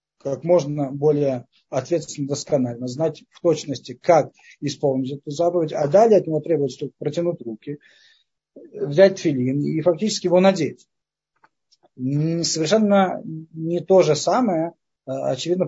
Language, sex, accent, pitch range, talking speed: Russian, male, native, 135-175 Hz, 120 wpm